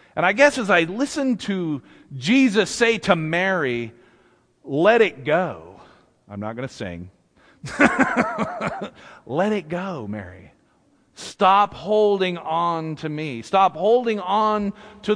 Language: English